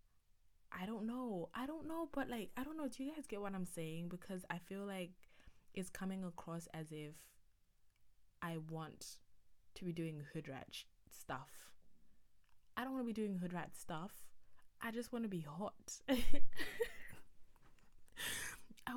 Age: 20-39